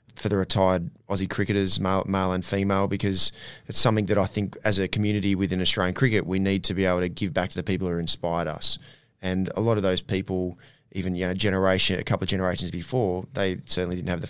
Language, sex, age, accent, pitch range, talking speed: English, male, 20-39, Australian, 95-110 Hz, 230 wpm